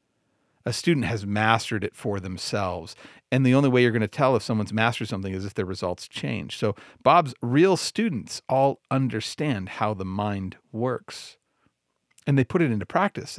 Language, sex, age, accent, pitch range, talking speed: English, male, 40-59, American, 105-135 Hz, 180 wpm